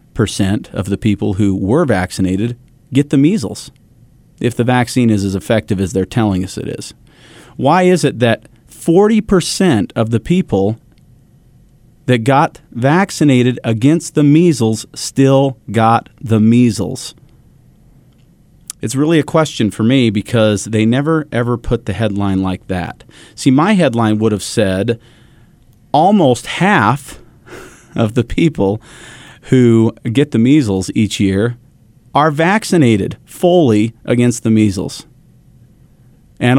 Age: 40-59